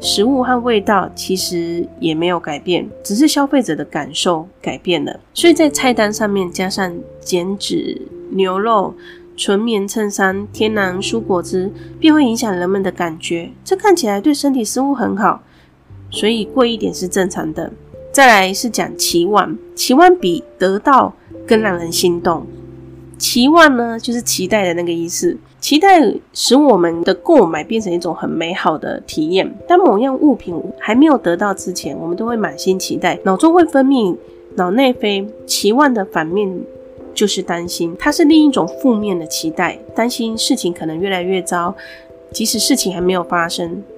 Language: Chinese